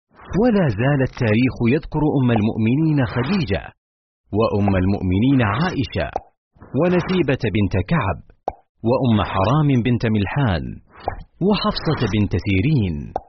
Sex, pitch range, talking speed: male, 100-140 Hz, 90 wpm